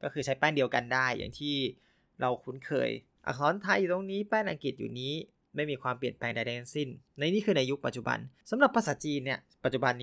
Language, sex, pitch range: Thai, male, 125-165 Hz